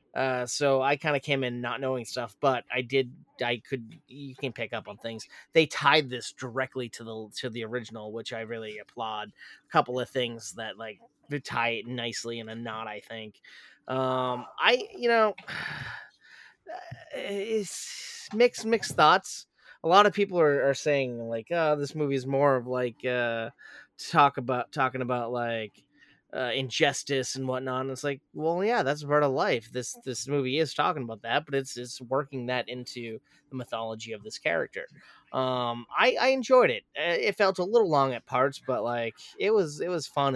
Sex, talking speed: male, 190 wpm